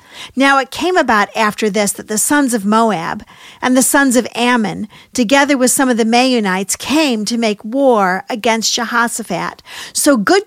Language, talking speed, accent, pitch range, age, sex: English, 170 wpm, American, 210-265 Hz, 50-69, female